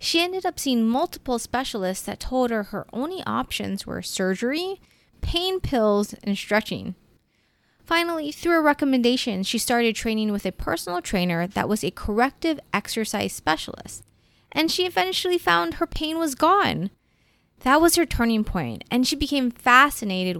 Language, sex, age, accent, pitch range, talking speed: English, female, 20-39, American, 195-295 Hz, 155 wpm